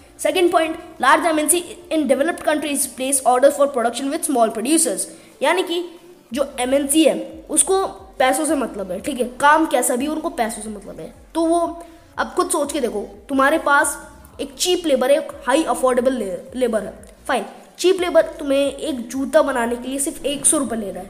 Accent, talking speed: Indian, 175 wpm